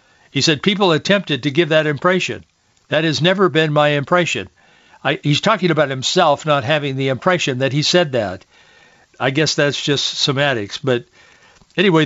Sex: male